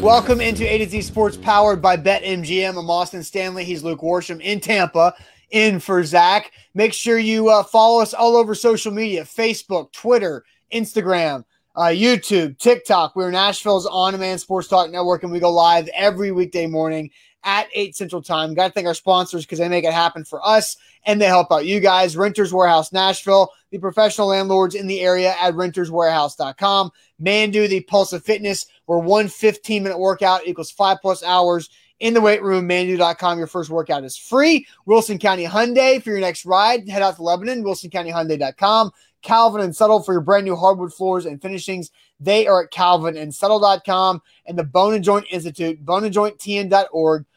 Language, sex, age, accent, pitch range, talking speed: English, male, 20-39, American, 175-210 Hz, 175 wpm